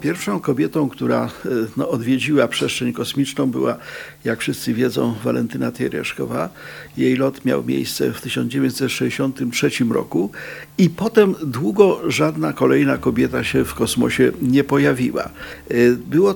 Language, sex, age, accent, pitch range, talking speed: Polish, male, 50-69, native, 120-145 Hz, 115 wpm